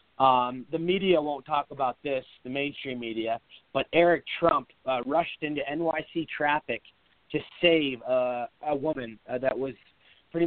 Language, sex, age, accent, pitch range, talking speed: English, male, 30-49, American, 120-145 Hz, 155 wpm